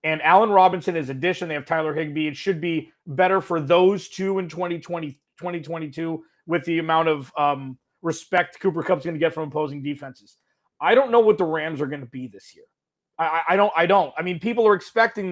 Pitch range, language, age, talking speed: 160-195 Hz, English, 30-49, 215 wpm